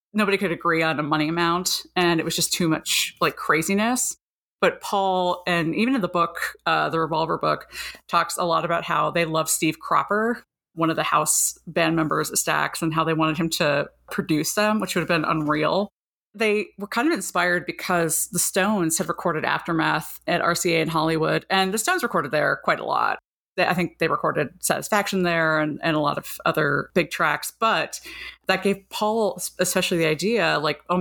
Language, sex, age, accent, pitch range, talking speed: English, female, 30-49, American, 160-185 Hz, 195 wpm